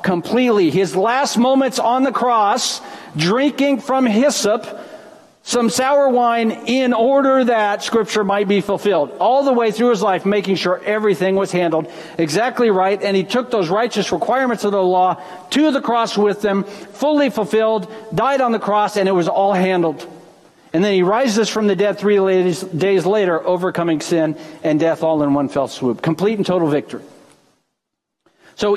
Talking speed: 175 wpm